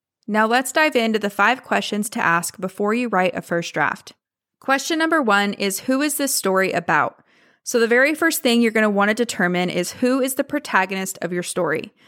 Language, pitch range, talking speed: English, 185-240 Hz, 215 wpm